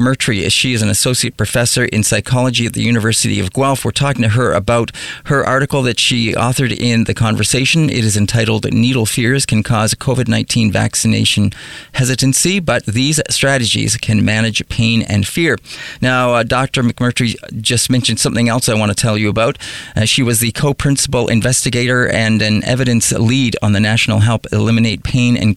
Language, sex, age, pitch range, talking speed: English, male, 40-59, 105-125 Hz, 175 wpm